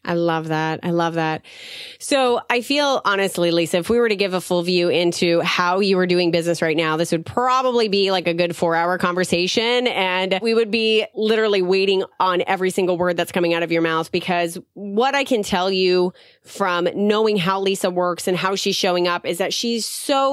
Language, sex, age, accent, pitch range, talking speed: English, female, 30-49, American, 175-220 Hz, 215 wpm